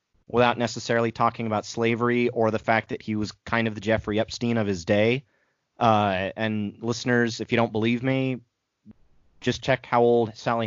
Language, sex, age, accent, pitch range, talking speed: English, male, 30-49, American, 105-125 Hz, 180 wpm